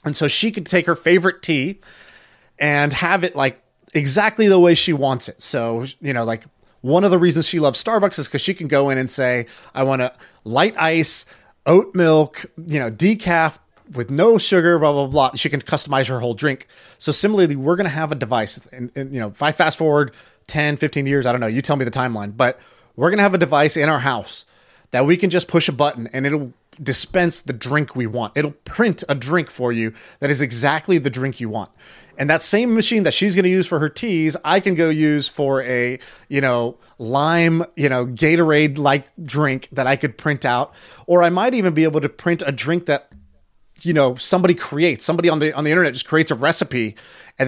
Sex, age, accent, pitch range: male, 30-49, American, 130-170 Hz